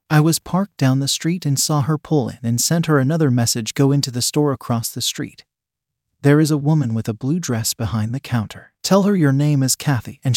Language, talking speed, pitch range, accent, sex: English, 235 wpm, 120-150 Hz, American, male